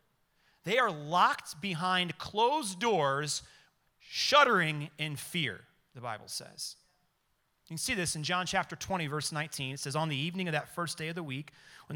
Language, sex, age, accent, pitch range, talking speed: English, male, 30-49, American, 115-145 Hz, 175 wpm